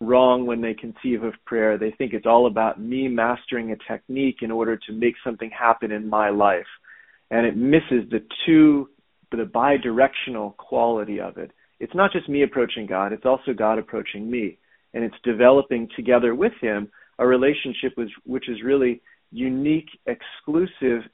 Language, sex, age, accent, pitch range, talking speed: English, male, 40-59, American, 115-145 Hz, 170 wpm